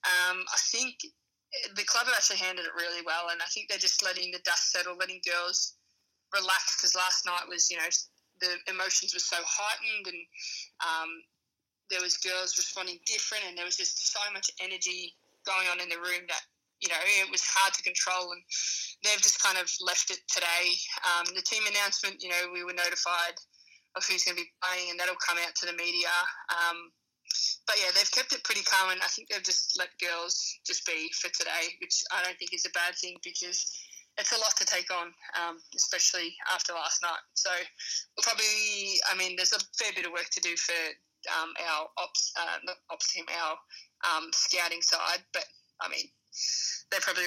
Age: 20-39